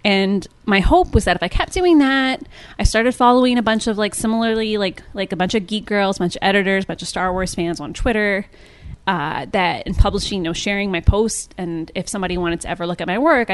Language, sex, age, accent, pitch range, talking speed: English, female, 20-39, American, 175-230 Hz, 255 wpm